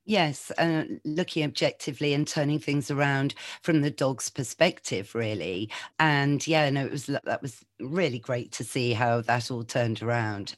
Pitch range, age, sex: 120-160 Hz, 40-59, female